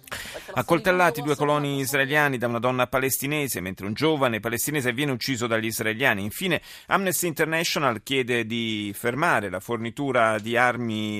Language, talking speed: Italian, 140 wpm